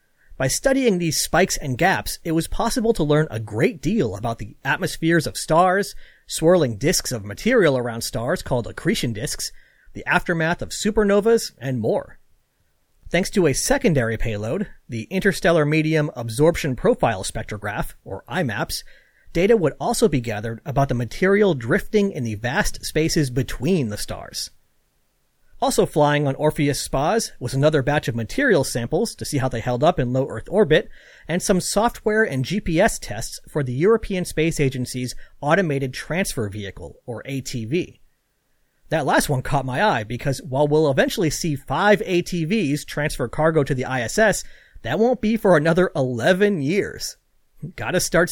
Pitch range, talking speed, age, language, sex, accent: 130-185 Hz, 160 wpm, 40-59, English, male, American